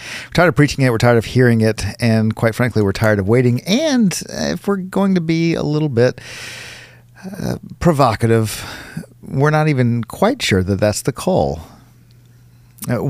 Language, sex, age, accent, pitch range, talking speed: English, male, 50-69, American, 105-125 Hz, 175 wpm